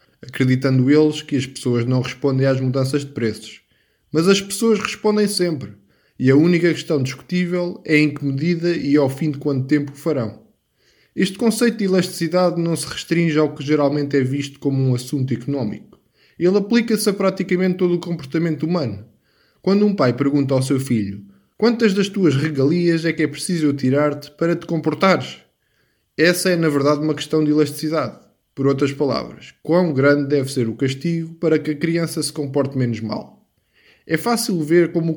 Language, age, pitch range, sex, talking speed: Portuguese, 20-39, 135-170 Hz, male, 180 wpm